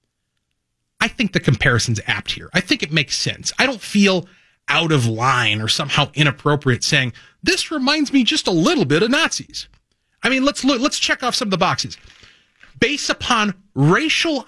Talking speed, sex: 180 wpm, male